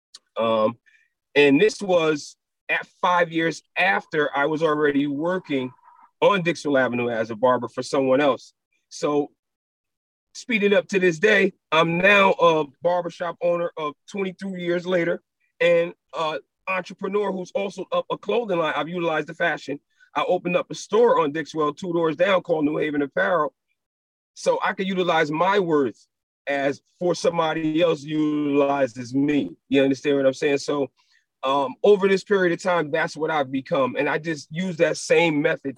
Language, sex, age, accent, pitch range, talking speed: English, male, 40-59, American, 145-195 Hz, 165 wpm